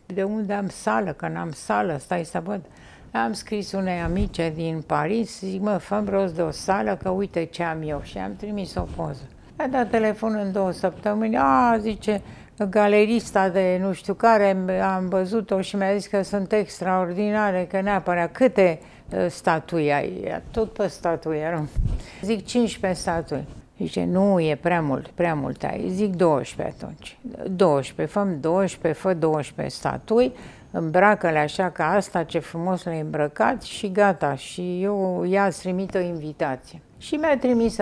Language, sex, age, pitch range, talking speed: Romanian, female, 60-79, 165-205 Hz, 165 wpm